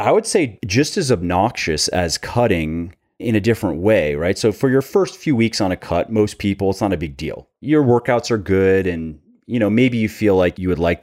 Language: English